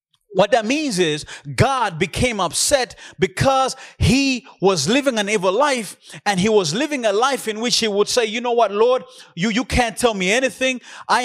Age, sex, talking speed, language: 30-49, male, 190 wpm, English